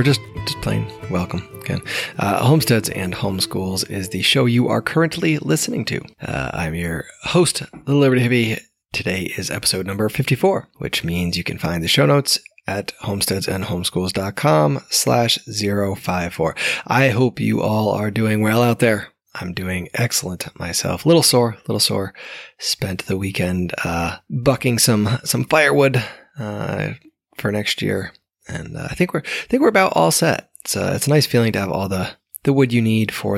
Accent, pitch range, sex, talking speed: American, 95-140 Hz, male, 170 wpm